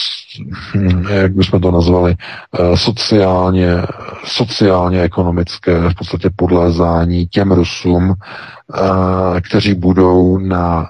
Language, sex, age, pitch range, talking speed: Czech, male, 40-59, 85-95 Hz, 75 wpm